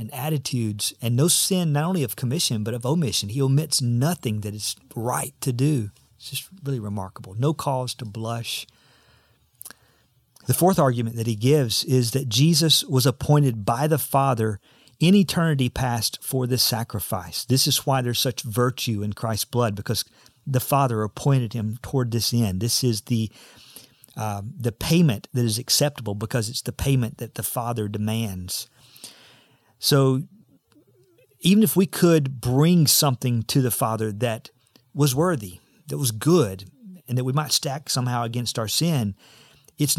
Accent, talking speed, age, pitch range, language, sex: American, 160 wpm, 50-69, 115-150 Hz, English, male